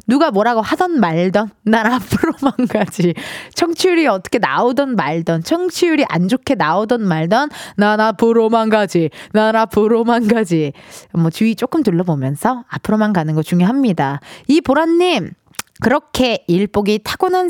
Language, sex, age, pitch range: Korean, female, 20-39, 195-290 Hz